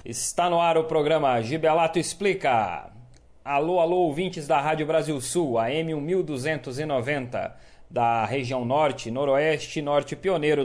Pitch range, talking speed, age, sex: 130-160 Hz, 130 wpm, 40-59, male